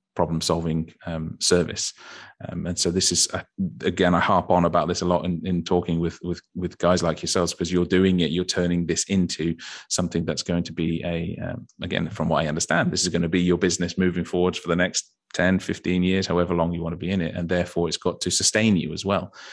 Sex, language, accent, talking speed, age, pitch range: male, English, British, 240 wpm, 30-49, 85-95 Hz